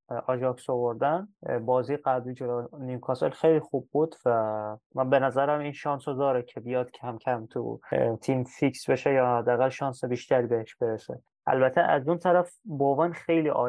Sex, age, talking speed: male, 20-39, 165 wpm